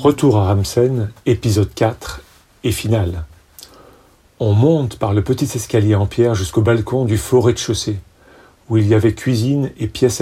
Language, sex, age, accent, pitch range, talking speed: French, male, 40-59, French, 100-120 Hz, 165 wpm